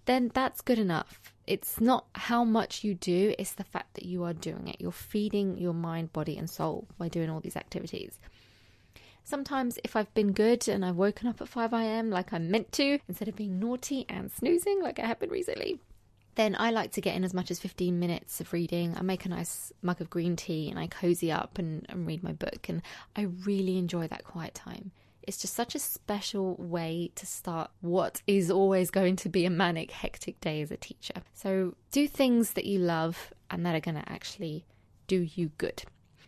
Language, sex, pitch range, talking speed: English, female, 170-220 Hz, 210 wpm